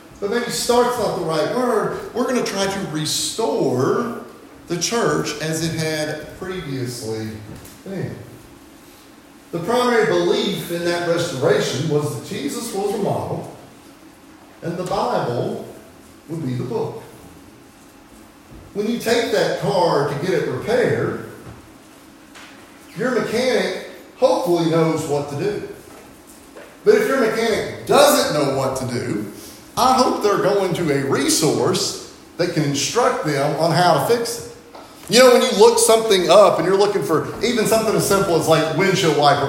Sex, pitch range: male, 160-240 Hz